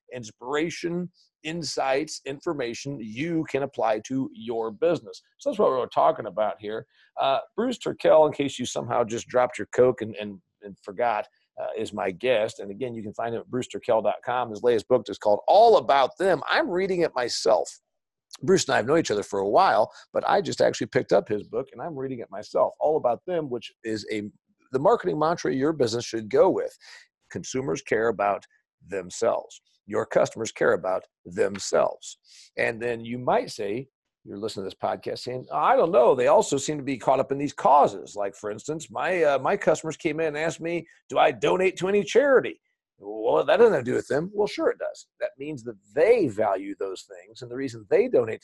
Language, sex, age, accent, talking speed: English, male, 50-69, American, 210 wpm